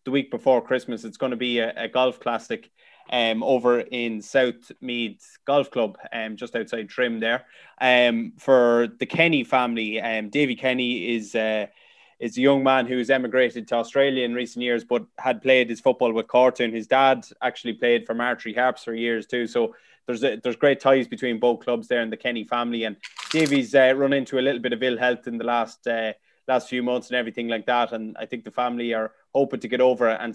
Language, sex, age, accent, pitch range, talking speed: English, male, 20-39, Irish, 115-130 Hz, 215 wpm